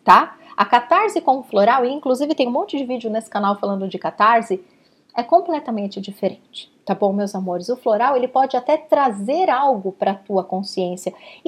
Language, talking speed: Portuguese, 185 wpm